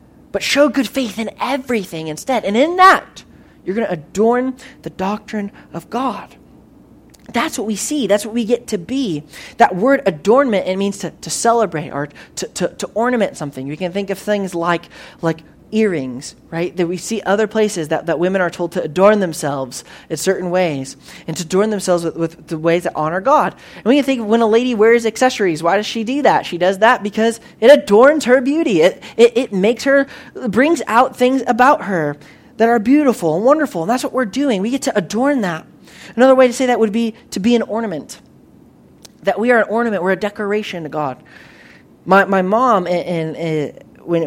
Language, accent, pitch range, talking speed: English, American, 165-235 Hz, 205 wpm